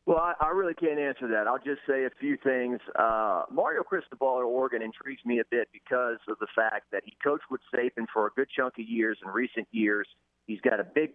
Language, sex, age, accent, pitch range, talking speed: English, male, 40-59, American, 105-130 Hz, 230 wpm